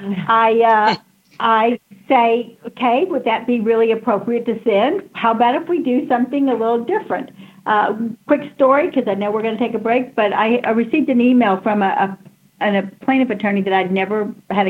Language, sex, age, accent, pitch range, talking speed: English, female, 60-79, American, 190-235 Hz, 200 wpm